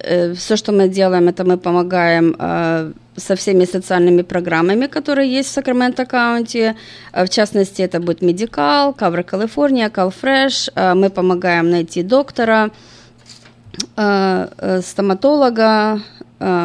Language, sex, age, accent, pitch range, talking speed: Russian, female, 20-39, native, 180-225 Hz, 105 wpm